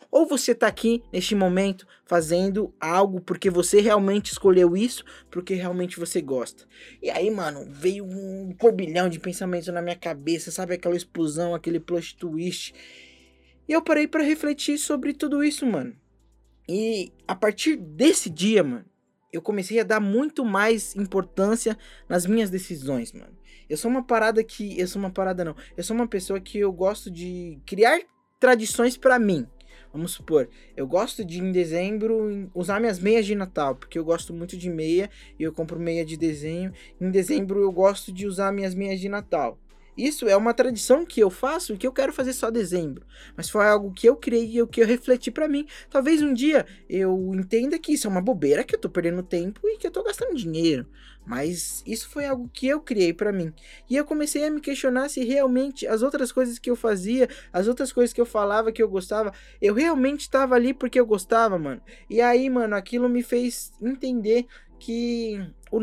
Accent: Brazilian